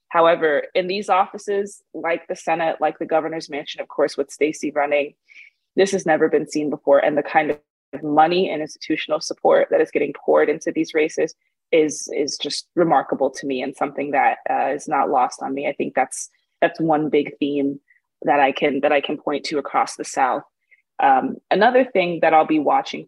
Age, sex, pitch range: 20-39, female, 150-195 Hz